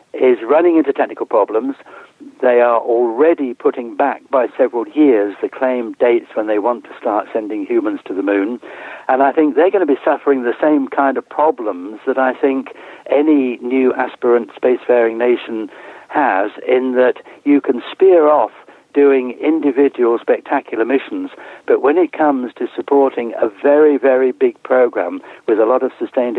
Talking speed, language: 170 wpm, English